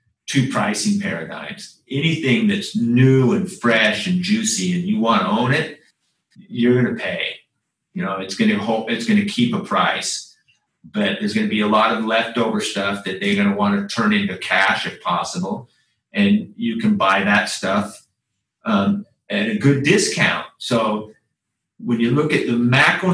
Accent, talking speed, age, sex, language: American, 175 wpm, 40-59, male, English